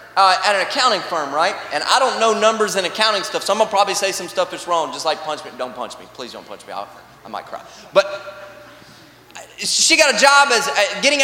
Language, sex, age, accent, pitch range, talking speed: English, male, 20-39, American, 200-270 Hz, 235 wpm